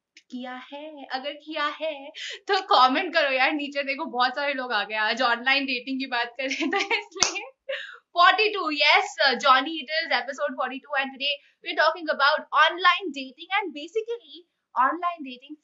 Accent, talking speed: native, 70 wpm